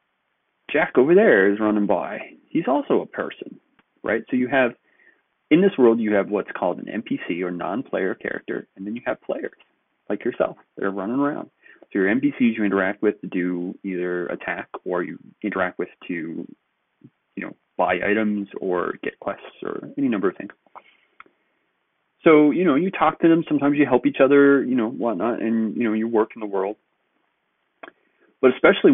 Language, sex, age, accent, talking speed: English, male, 30-49, American, 185 wpm